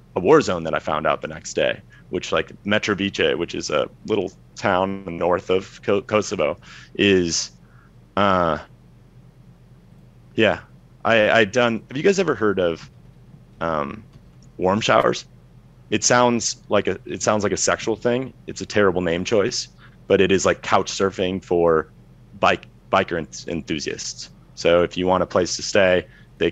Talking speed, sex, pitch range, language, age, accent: 160 wpm, male, 85-115 Hz, English, 30-49, American